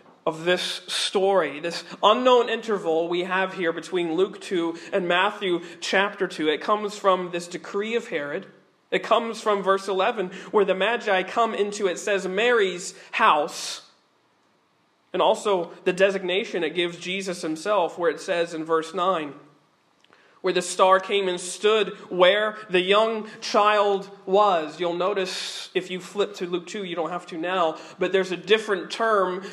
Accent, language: American, English